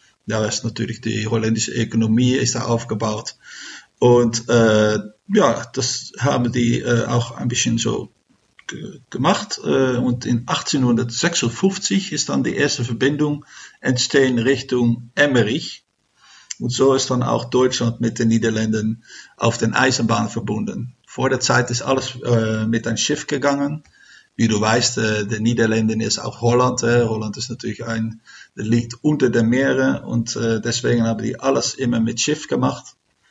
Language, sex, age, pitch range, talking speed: German, male, 50-69, 115-130 Hz, 155 wpm